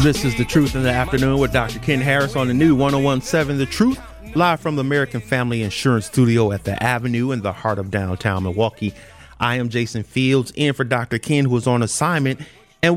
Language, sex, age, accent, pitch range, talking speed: English, male, 30-49, American, 120-155 Hz, 215 wpm